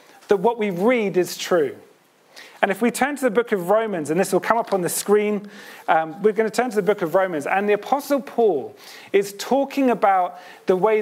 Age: 40-59